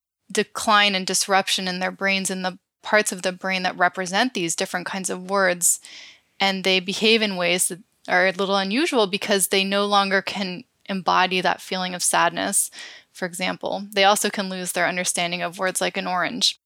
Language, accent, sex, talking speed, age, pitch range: English, American, female, 185 wpm, 10-29, 185-205 Hz